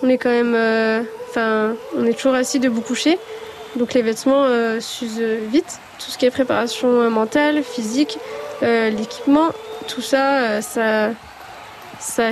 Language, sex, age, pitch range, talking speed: French, female, 20-39, 230-275 Hz, 160 wpm